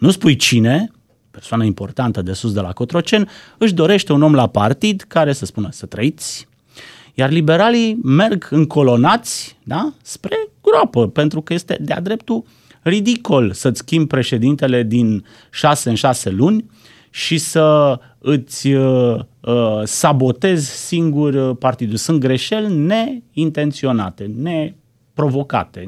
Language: Romanian